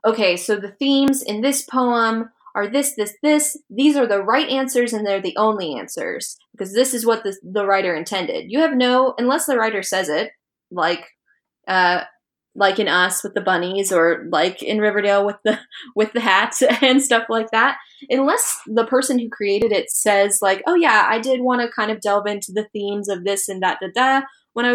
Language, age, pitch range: English, 10-29, 195-250 Hz